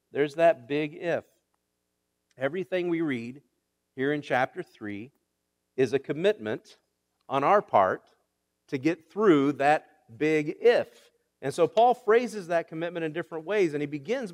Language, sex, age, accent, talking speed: English, male, 50-69, American, 145 wpm